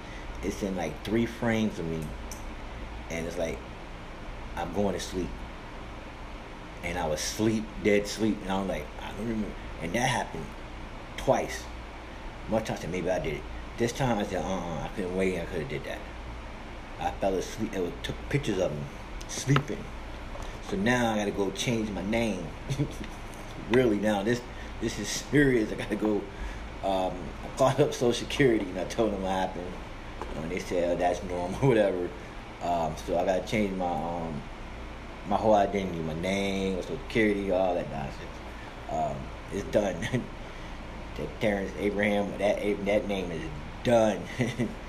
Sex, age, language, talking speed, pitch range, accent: male, 30-49, English, 165 wpm, 90-110 Hz, American